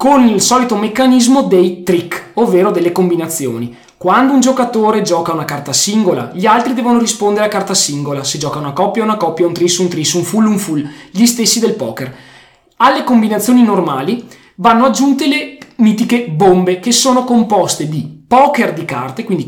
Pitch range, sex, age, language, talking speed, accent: 170-230 Hz, male, 20-39, Italian, 175 wpm, native